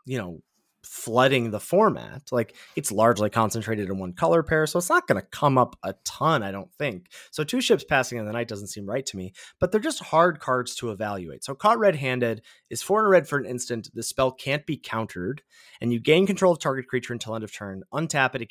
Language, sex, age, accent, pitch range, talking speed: English, male, 30-49, American, 115-155 Hz, 245 wpm